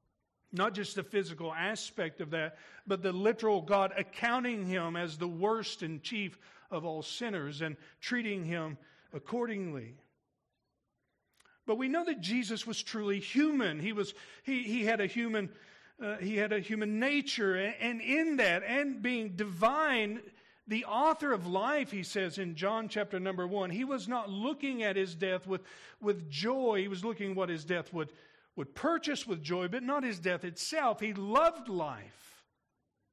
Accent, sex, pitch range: American, male, 180-235 Hz